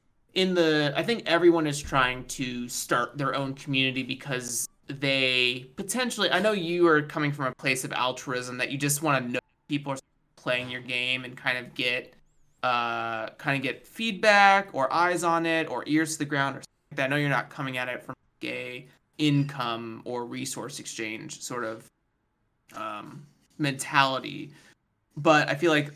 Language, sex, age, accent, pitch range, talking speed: English, male, 20-39, American, 130-155 Hz, 185 wpm